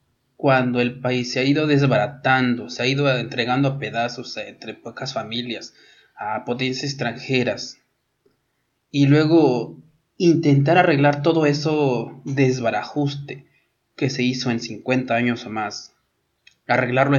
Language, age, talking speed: Spanish, 20-39, 120 wpm